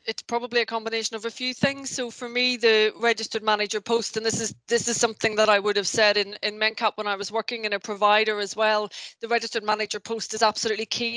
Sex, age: female, 20-39